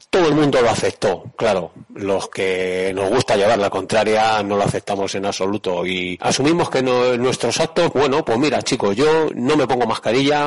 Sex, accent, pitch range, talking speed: male, Spanish, 110-145 Hz, 185 wpm